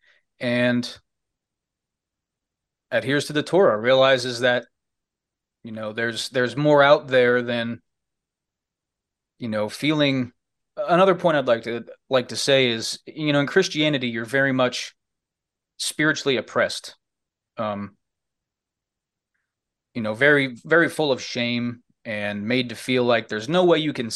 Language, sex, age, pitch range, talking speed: English, male, 30-49, 115-135 Hz, 135 wpm